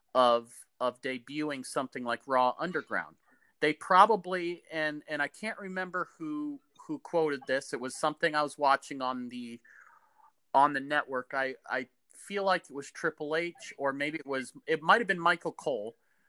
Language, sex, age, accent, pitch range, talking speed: English, male, 40-59, American, 135-180 Hz, 175 wpm